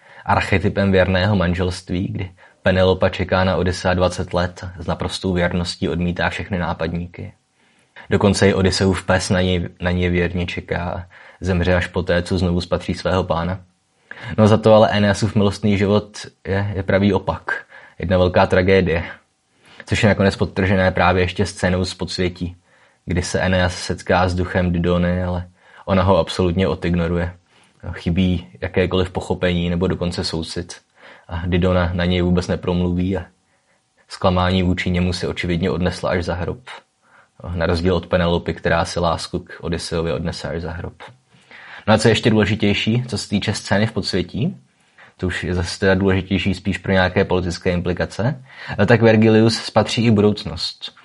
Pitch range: 90-100 Hz